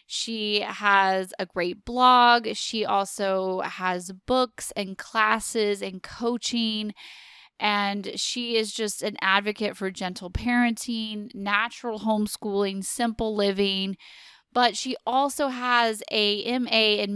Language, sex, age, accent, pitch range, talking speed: English, female, 20-39, American, 190-225 Hz, 115 wpm